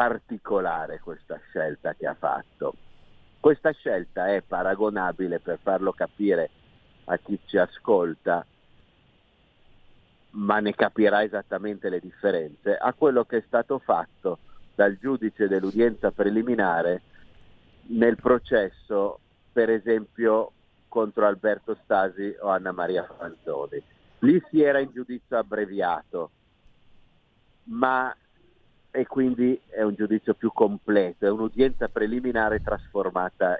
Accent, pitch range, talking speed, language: native, 100-125 Hz, 110 wpm, Italian